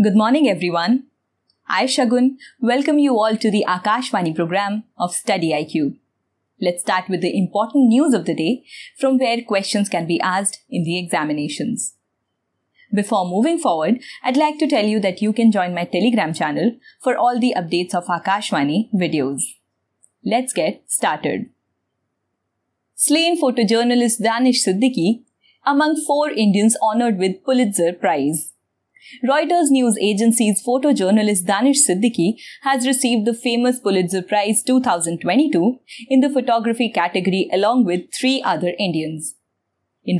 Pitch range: 190-260 Hz